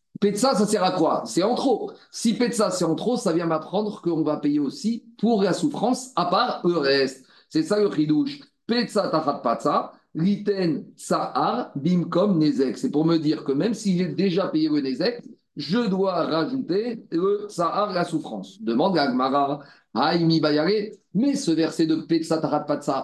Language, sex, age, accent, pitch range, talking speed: French, male, 40-59, French, 160-210 Hz, 175 wpm